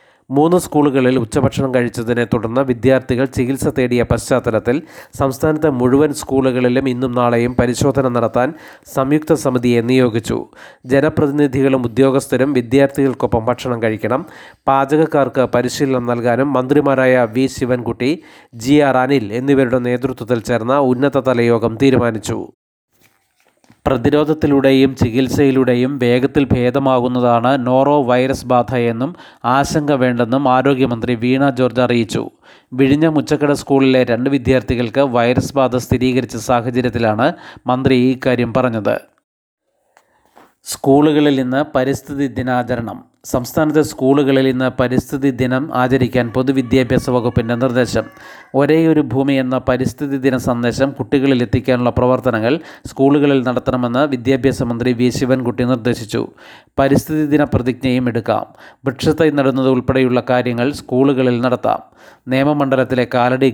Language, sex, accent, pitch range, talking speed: Malayalam, male, native, 125-135 Hz, 95 wpm